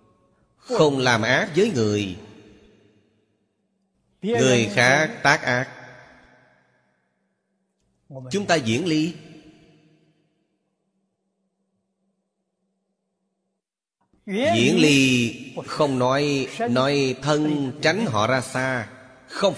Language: Vietnamese